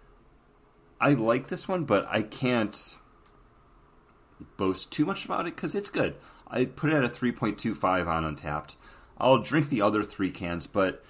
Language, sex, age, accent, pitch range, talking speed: English, male, 30-49, American, 80-115 Hz, 160 wpm